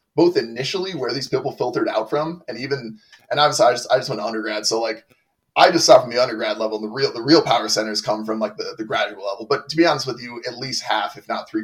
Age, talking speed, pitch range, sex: 20-39, 280 wpm, 110-175 Hz, male